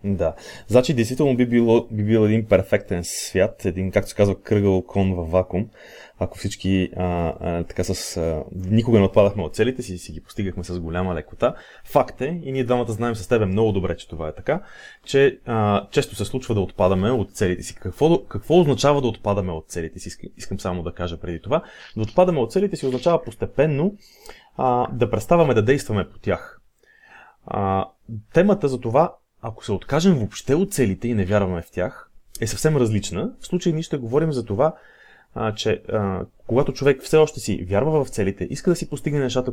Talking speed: 195 wpm